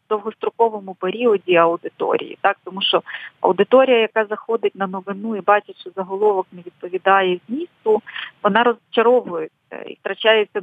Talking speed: 130 wpm